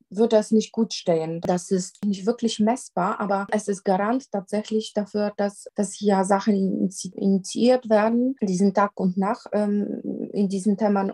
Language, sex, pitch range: German, female, 195-225 Hz